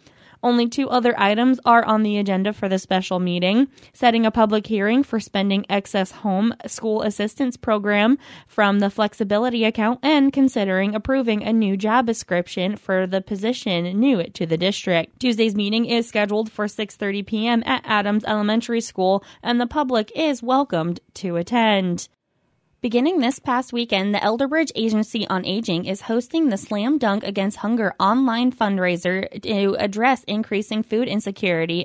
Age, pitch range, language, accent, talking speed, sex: 20-39, 190-235 Hz, English, American, 155 wpm, female